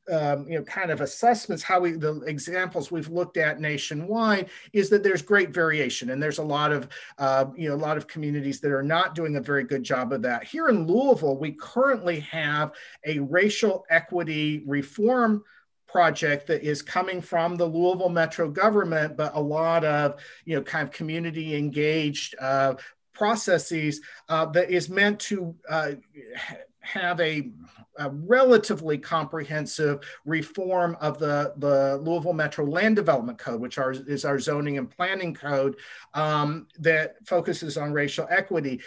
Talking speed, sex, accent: 165 wpm, male, American